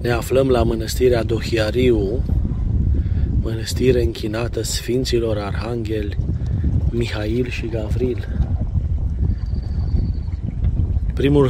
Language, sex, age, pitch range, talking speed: Romanian, male, 30-49, 90-130 Hz, 70 wpm